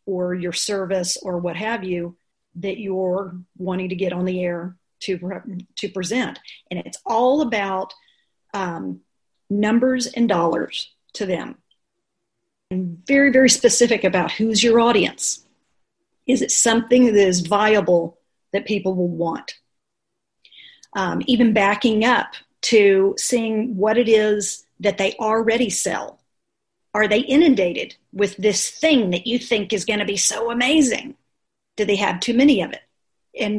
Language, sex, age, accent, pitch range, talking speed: English, female, 40-59, American, 185-235 Hz, 145 wpm